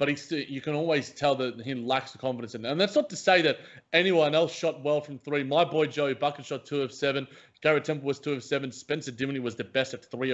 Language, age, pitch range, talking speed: English, 20-39, 130-150 Hz, 265 wpm